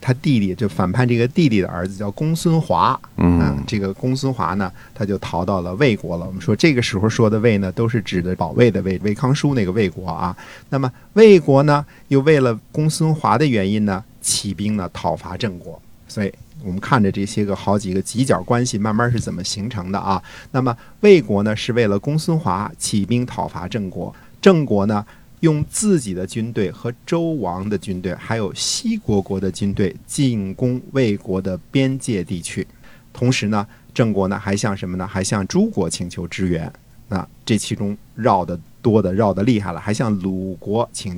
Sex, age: male, 50-69